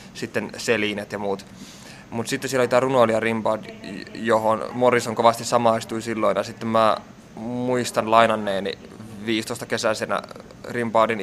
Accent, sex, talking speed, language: native, male, 125 wpm, Finnish